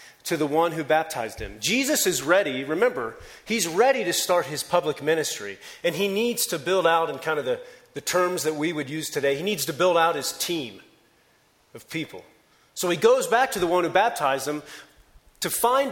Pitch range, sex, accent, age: 145-235 Hz, male, American, 40-59